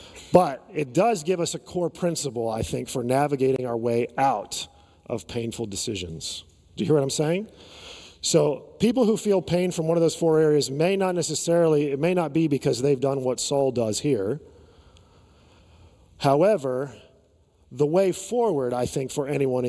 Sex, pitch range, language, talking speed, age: male, 125-170 Hz, English, 175 wpm, 40-59